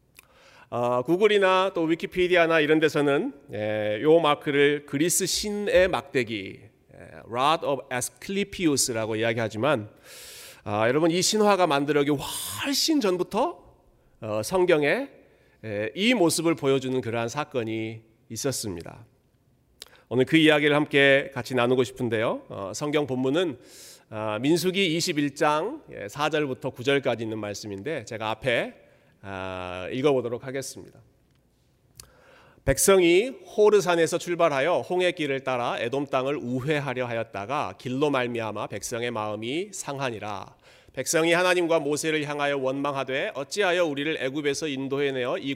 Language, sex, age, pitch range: Korean, male, 40-59, 120-170 Hz